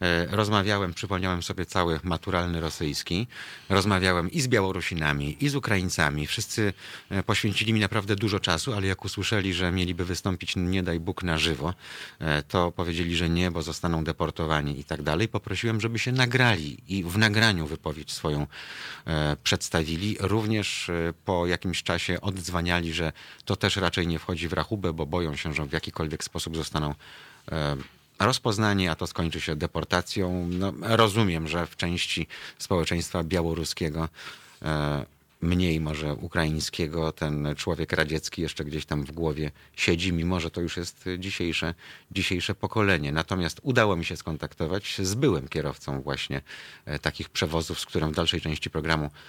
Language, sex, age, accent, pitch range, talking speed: Polish, male, 30-49, native, 80-95 Hz, 150 wpm